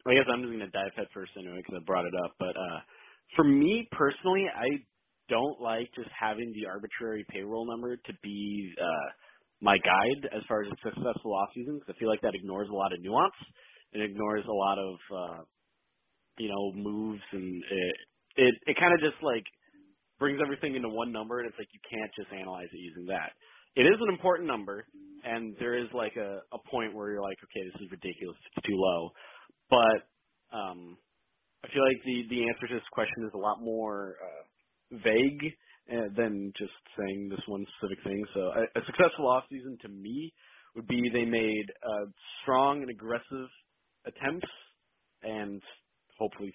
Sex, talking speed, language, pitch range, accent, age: male, 190 wpm, English, 100-125 Hz, American, 30-49